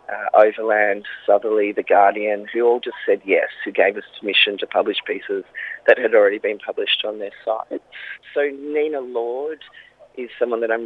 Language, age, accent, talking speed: English, 20-39, Australian, 175 wpm